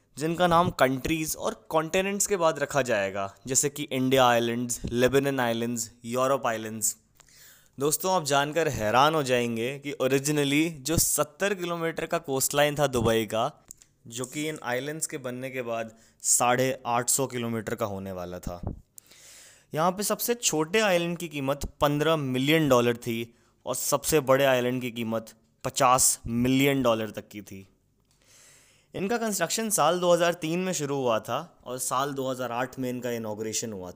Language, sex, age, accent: English, male, 20-39, Indian